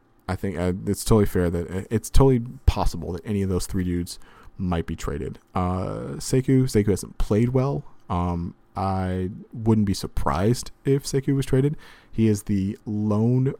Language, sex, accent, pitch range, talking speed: English, male, American, 90-110 Hz, 165 wpm